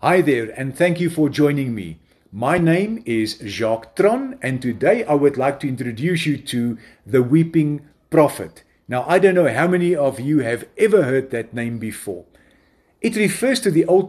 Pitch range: 120-175 Hz